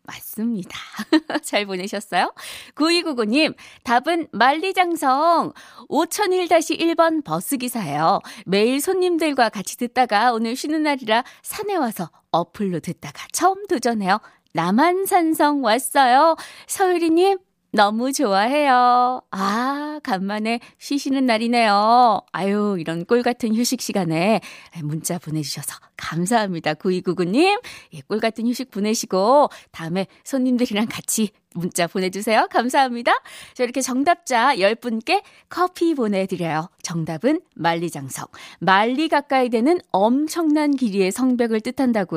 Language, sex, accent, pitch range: Korean, female, native, 190-290 Hz